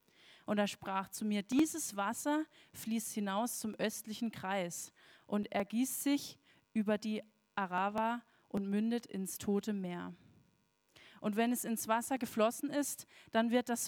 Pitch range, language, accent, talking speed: 200-240 Hz, German, German, 145 wpm